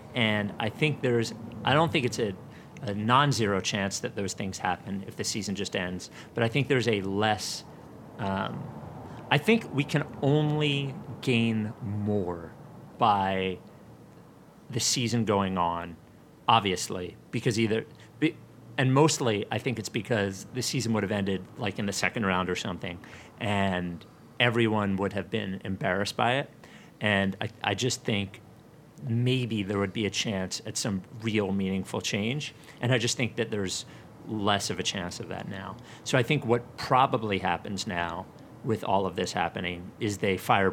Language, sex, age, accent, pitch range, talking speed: English, male, 40-59, American, 100-125 Hz, 165 wpm